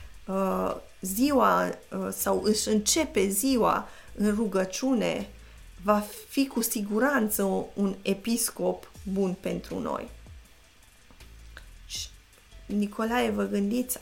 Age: 30-49